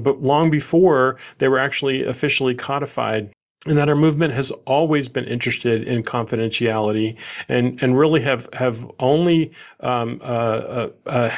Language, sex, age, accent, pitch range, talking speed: English, male, 40-59, American, 115-135 Hz, 150 wpm